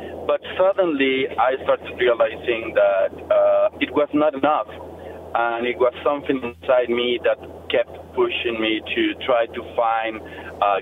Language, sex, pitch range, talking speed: English, male, 125-205 Hz, 145 wpm